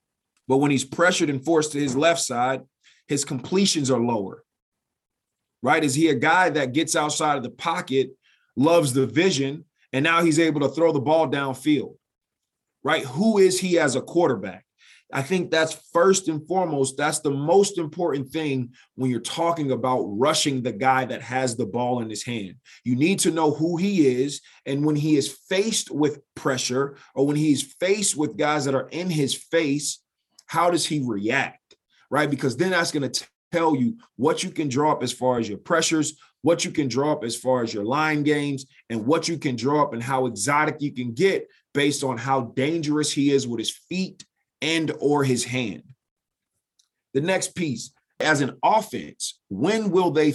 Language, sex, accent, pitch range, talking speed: English, male, American, 130-165 Hz, 190 wpm